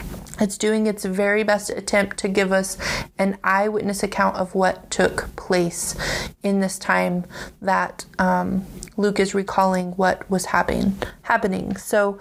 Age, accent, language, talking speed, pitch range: 30-49, American, English, 145 wpm, 190-215 Hz